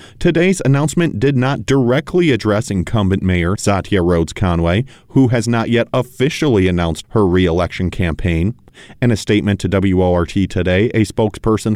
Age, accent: 40-59, American